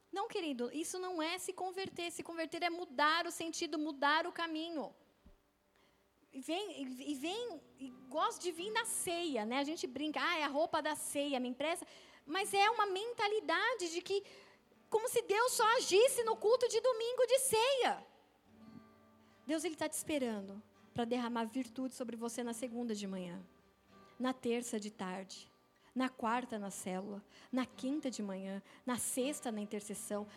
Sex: female